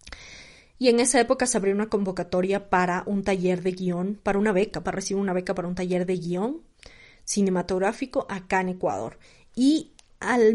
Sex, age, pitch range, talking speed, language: female, 20-39, 180-215 Hz, 175 wpm, Spanish